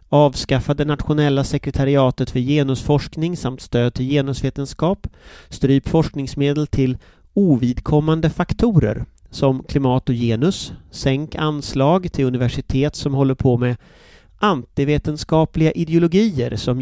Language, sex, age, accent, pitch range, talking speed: English, male, 30-49, Swedish, 125-165 Hz, 105 wpm